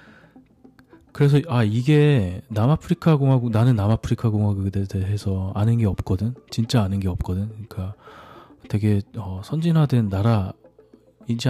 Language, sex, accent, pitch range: Korean, male, native, 100-125 Hz